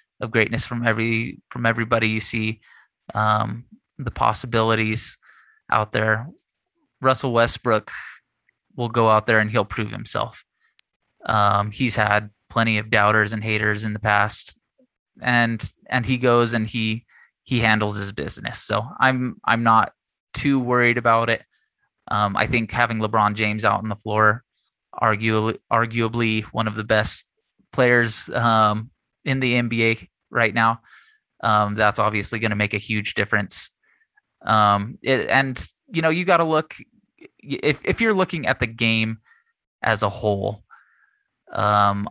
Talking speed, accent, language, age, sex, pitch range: 150 wpm, American, English, 20-39, male, 105-120 Hz